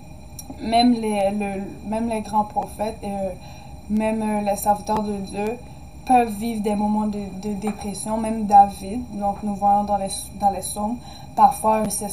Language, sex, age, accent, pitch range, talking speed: French, female, 20-39, Canadian, 205-235 Hz, 165 wpm